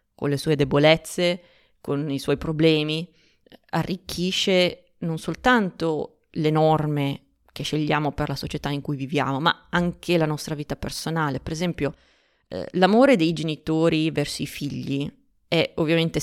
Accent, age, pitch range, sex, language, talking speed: native, 20-39, 145-170 Hz, female, Italian, 140 wpm